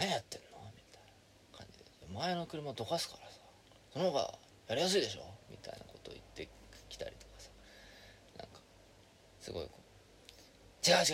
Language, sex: Japanese, male